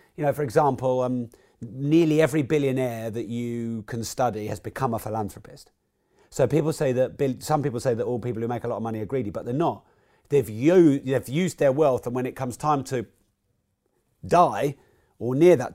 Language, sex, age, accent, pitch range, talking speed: English, male, 30-49, British, 115-150 Hz, 200 wpm